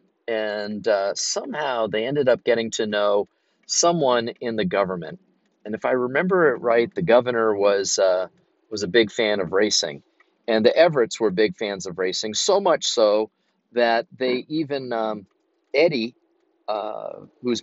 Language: English